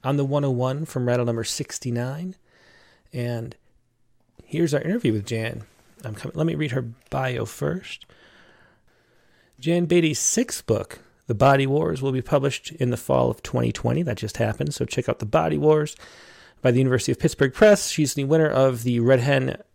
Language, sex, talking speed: English, male, 170 wpm